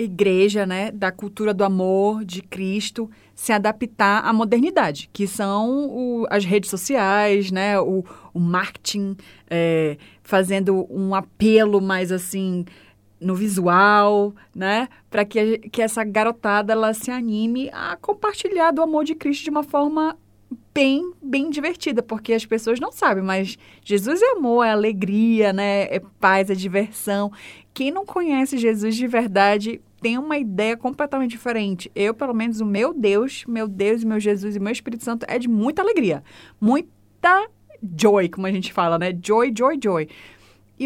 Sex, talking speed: female, 155 wpm